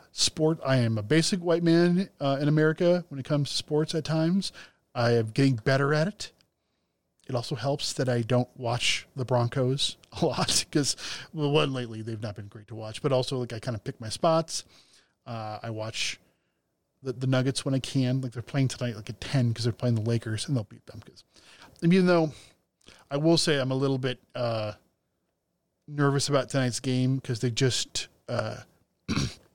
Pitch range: 120-150 Hz